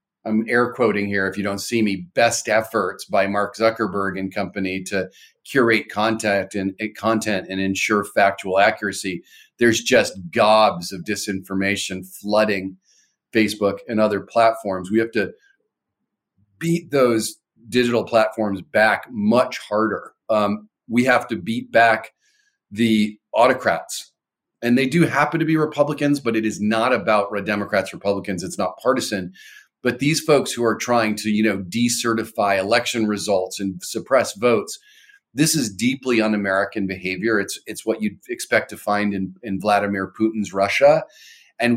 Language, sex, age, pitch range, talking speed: English, male, 40-59, 100-115 Hz, 145 wpm